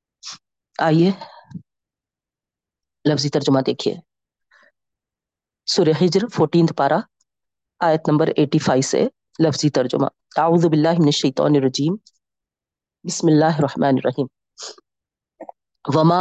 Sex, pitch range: female, 150-175 Hz